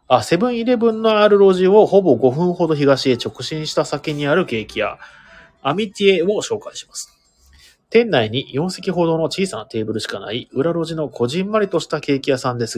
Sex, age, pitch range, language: male, 30-49, 125-185 Hz, Japanese